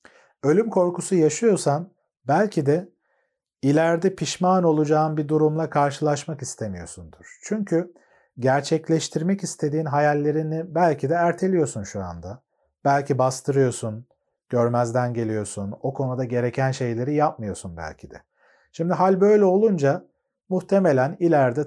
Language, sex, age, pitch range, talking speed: Turkish, male, 40-59, 125-160 Hz, 105 wpm